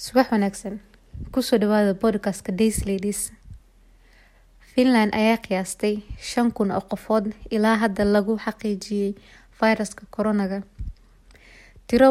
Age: 20-39